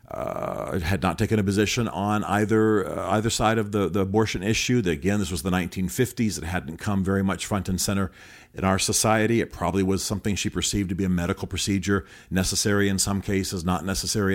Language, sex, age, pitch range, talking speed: English, male, 50-69, 85-105 Hz, 210 wpm